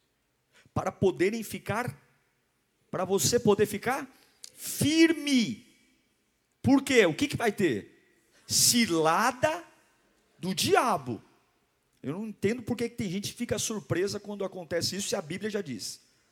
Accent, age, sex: Brazilian, 50-69, male